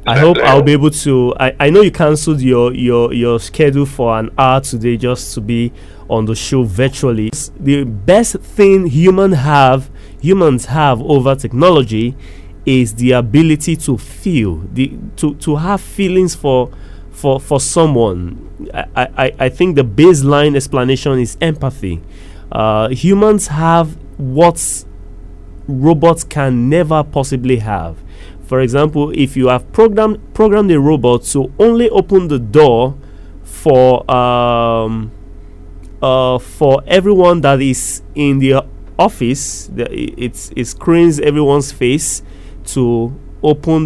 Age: 30-49